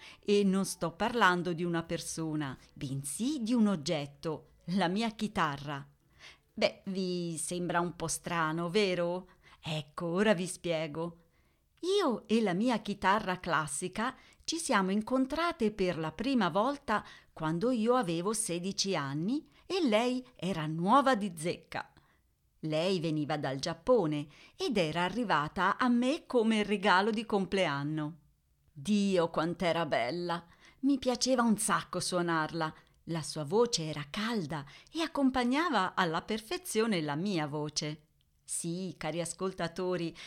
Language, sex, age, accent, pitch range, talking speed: Italian, female, 40-59, native, 160-225 Hz, 125 wpm